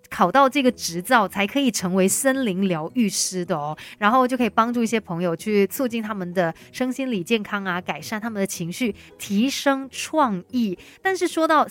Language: Chinese